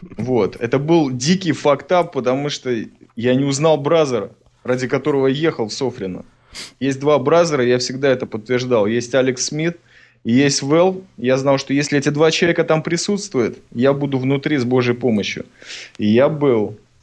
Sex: male